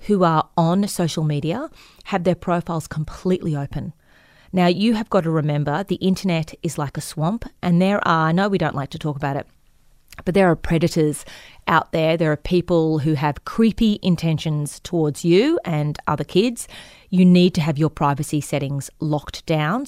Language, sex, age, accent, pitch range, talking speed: English, female, 30-49, Australian, 155-200 Hz, 185 wpm